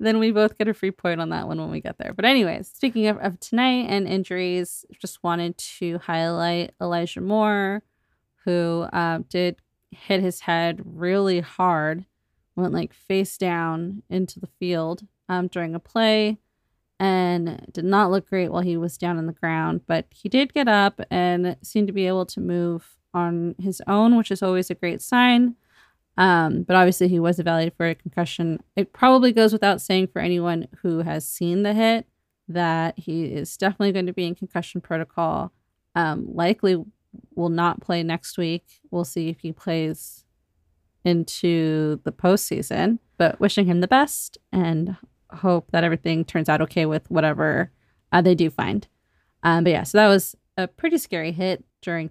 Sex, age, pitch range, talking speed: female, 20-39, 170-195 Hz, 180 wpm